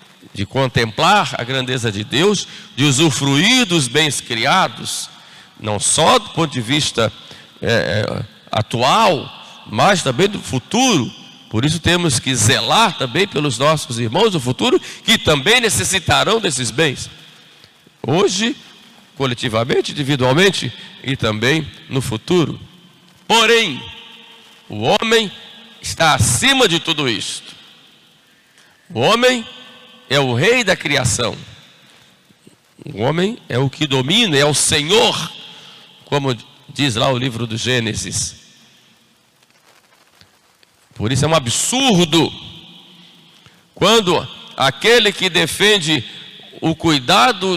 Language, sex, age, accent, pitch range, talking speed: Portuguese, male, 50-69, Brazilian, 135-210 Hz, 110 wpm